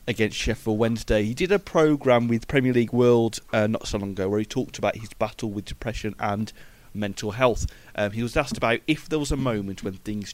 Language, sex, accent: English, male, British